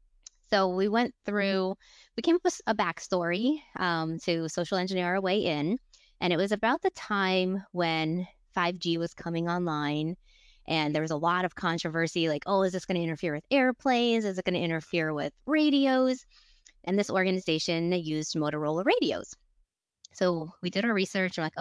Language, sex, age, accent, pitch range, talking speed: English, female, 20-39, American, 165-215 Hz, 180 wpm